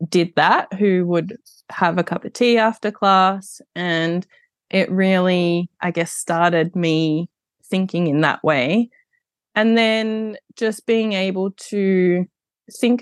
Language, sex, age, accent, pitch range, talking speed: English, female, 20-39, Australian, 170-200 Hz, 135 wpm